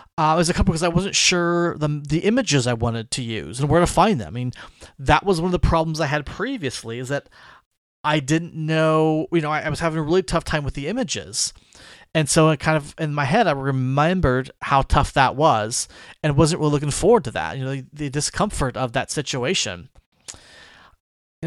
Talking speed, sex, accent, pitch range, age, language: 225 wpm, male, American, 135-165 Hz, 30-49, English